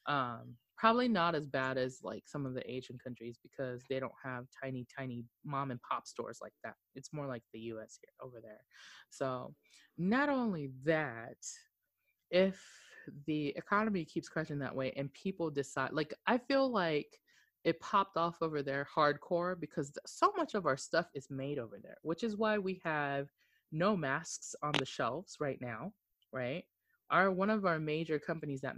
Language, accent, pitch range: English, American, 130-170 Hz